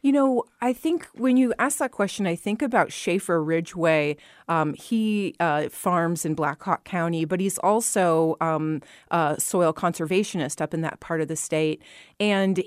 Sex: female